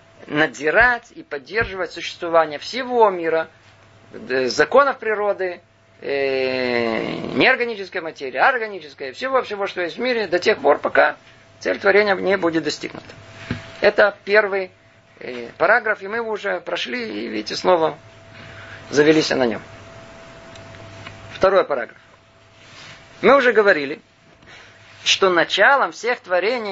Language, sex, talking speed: Russian, male, 110 wpm